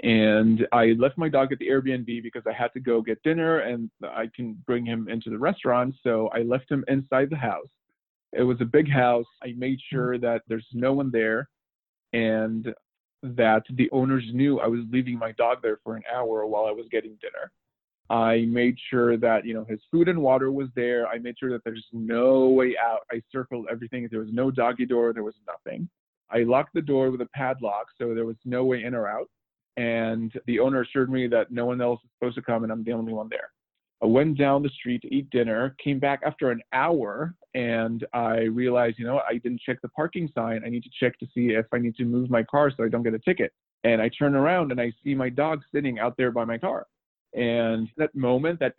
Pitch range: 115-130 Hz